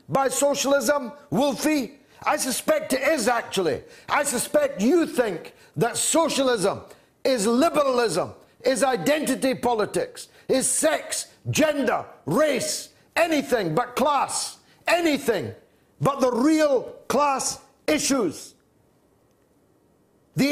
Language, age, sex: English, 50-69, male